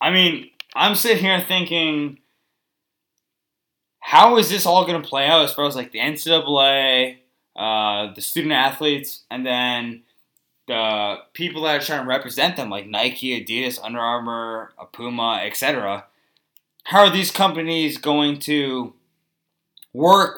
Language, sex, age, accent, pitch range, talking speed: English, male, 20-39, American, 130-170 Hz, 140 wpm